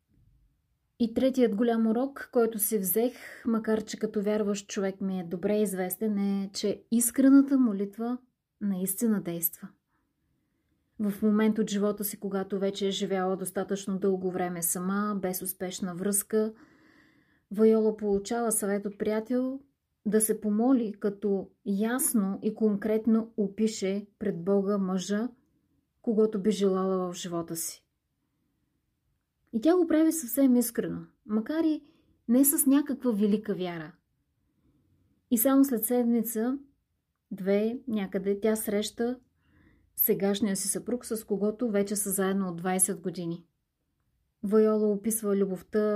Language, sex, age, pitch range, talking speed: Bulgarian, female, 30-49, 195-230 Hz, 125 wpm